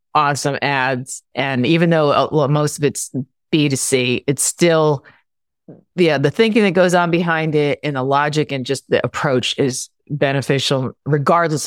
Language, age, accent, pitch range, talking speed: English, 40-59, American, 140-195 Hz, 150 wpm